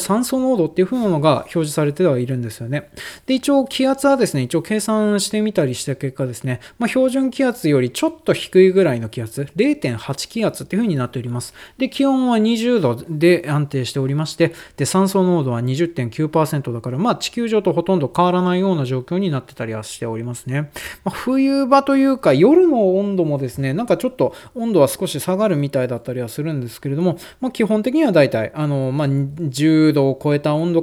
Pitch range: 130-215 Hz